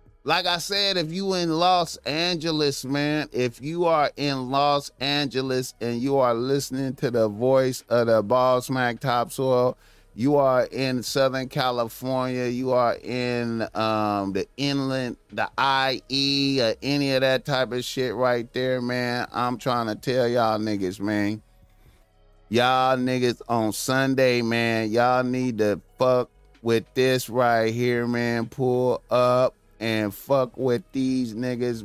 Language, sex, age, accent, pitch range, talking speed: English, male, 30-49, American, 115-130 Hz, 145 wpm